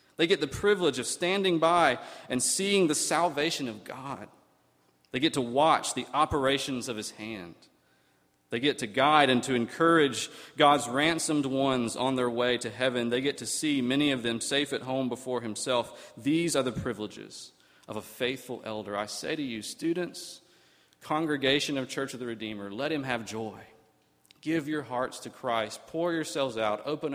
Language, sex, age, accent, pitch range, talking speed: English, male, 40-59, American, 110-135 Hz, 180 wpm